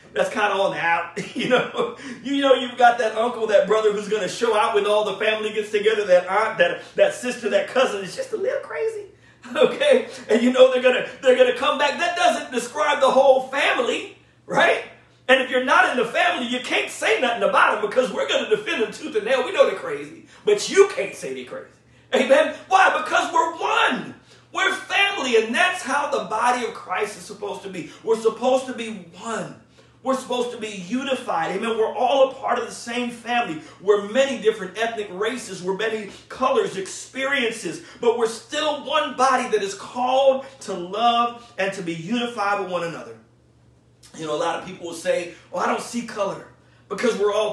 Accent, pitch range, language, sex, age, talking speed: American, 205-280 Hz, English, male, 40-59, 210 wpm